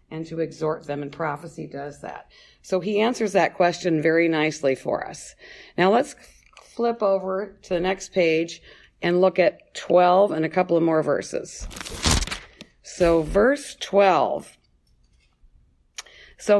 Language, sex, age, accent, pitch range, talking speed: English, female, 50-69, American, 155-190 Hz, 140 wpm